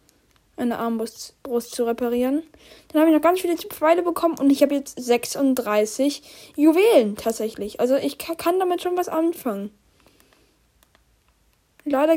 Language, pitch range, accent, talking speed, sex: German, 235-295 Hz, German, 135 wpm, female